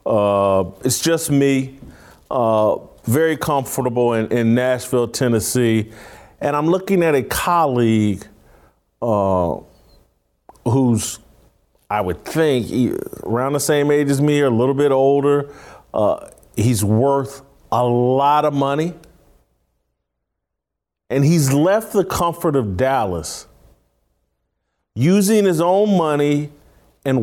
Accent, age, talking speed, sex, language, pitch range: American, 40-59, 115 wpm, male, English, 115-170 Hz